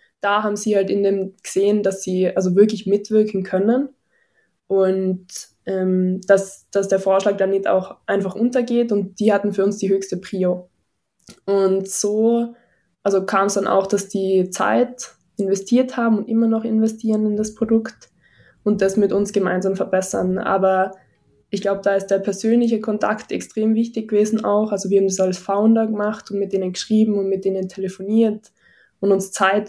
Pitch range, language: 185-210 Hz, German